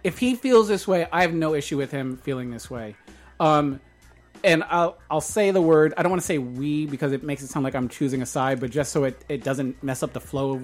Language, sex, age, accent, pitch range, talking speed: English, male, 30-49, American, 135-180 Hz, 270 wpm